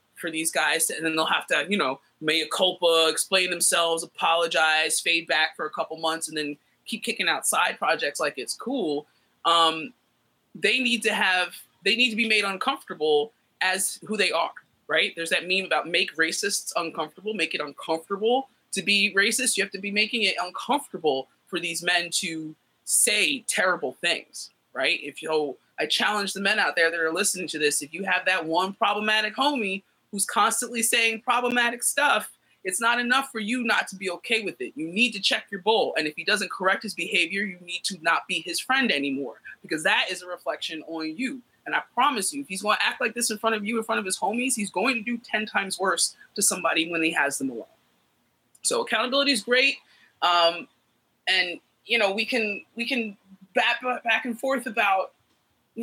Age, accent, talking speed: 20-39, American, 205 wpm